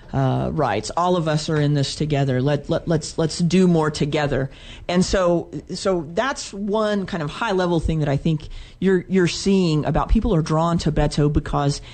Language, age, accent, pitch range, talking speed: English, 40-59, American, 145-180 Hz, 195 wpm